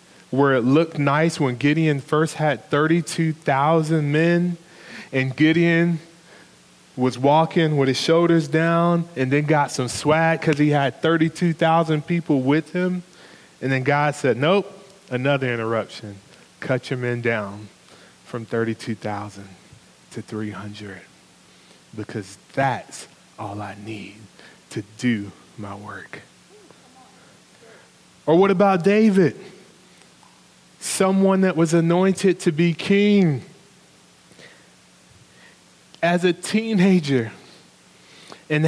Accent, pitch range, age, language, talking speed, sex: American, 125-180 Hz, 20-39, English, 105 wpm, male